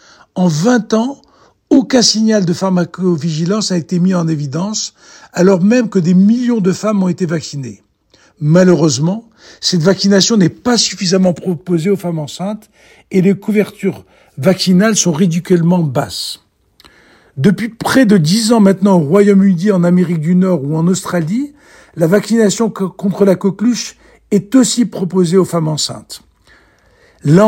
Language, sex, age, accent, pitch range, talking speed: German, male, 60-79, French, 170-210 Hz, 145 wpm